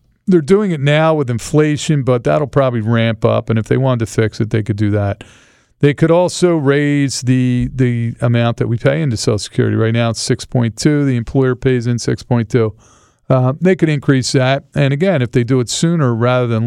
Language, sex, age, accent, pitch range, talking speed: English, male, 50-69, American, 115-140 Hz, 210 wpm